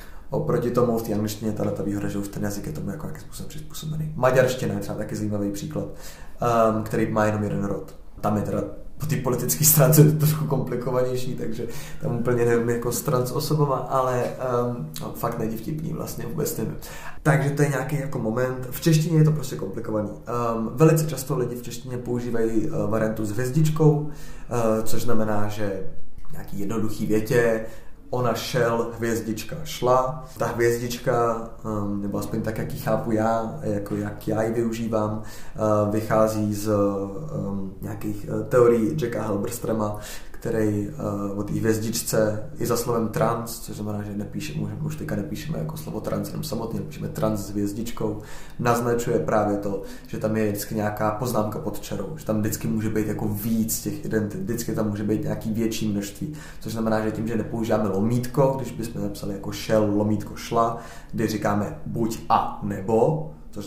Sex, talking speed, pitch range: male, 170 wpm, 105-125 Hz